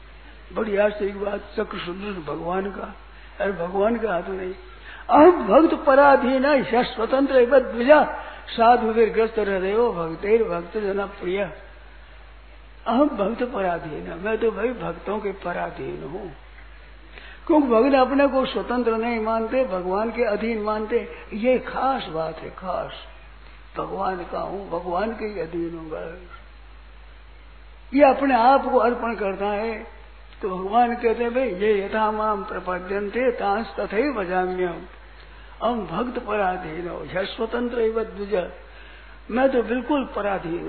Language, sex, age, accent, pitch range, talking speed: Hindi, male, 60-79, native, 175-245 Hz, 130 wpm